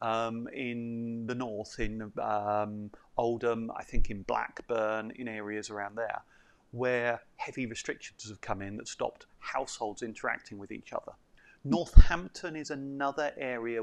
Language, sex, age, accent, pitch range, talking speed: English, male, 30-49, British, 110-130 Hz, 140 wpm